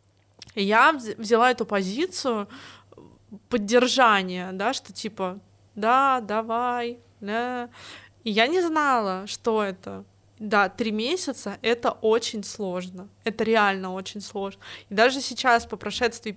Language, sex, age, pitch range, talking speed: Russian, female, 20-39, 205-250 Hz, 115 wpm